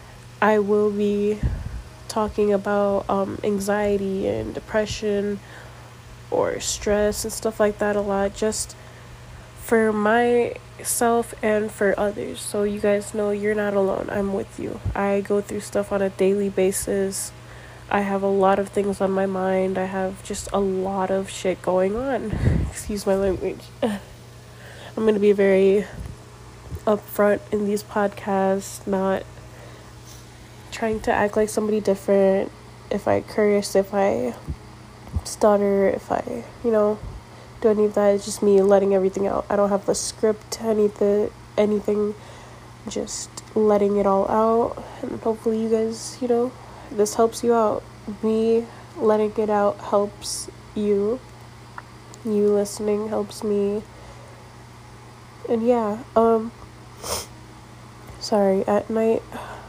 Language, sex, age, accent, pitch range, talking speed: English, female, 20-39, American, 195-215 Hz, 140 wpm